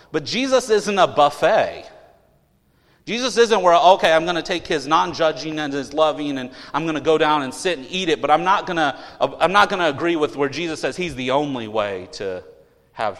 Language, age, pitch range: English, 40-59, 125-175 Hz